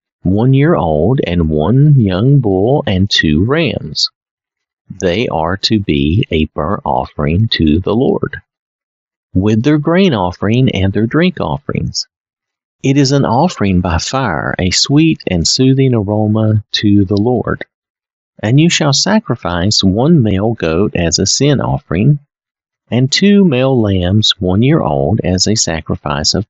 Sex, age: male, 50-69